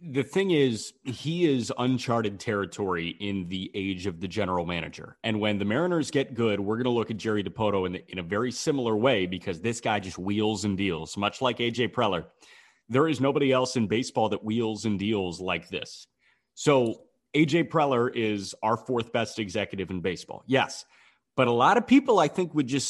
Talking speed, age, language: 200 wpm, 30-49, English